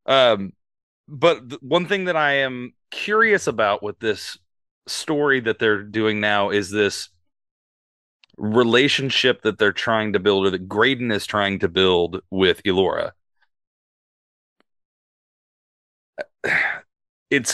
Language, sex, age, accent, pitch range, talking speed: English, male, 30-49, American, 100-130 Hz, 120 wpm